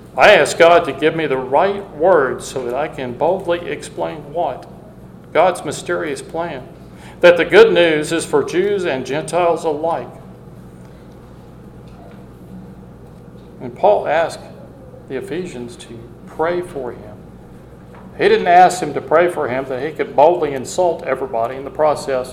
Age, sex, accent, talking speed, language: 50-69, male, American, 150 wpm, English